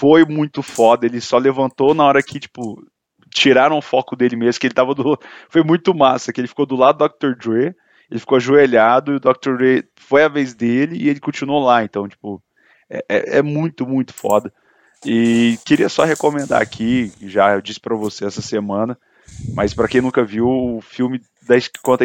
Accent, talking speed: Brazilian, 205 wpm